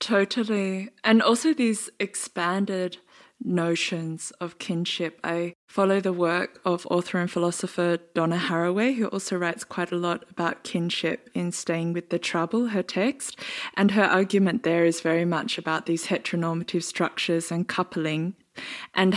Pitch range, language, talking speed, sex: 170-185 Hz, English, 145 wpm, female